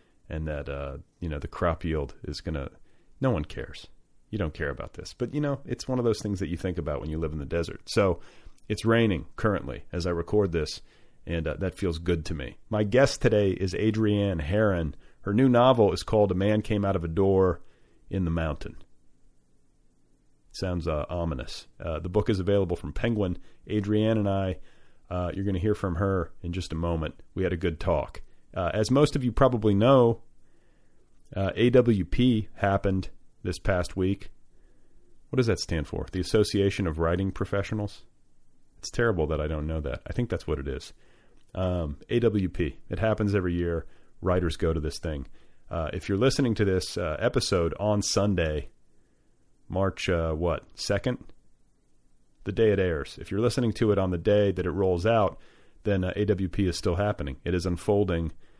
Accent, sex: American, male